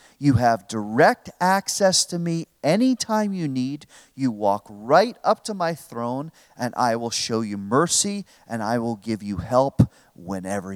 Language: English